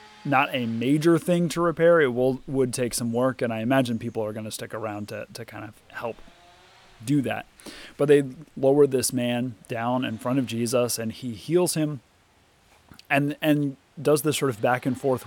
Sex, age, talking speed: male, 30-49, 200 wpm